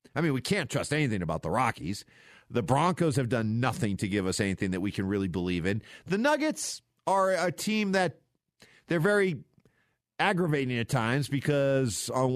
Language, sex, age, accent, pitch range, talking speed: English, male, 40-59, American, 120-175 Hz, 180 wpm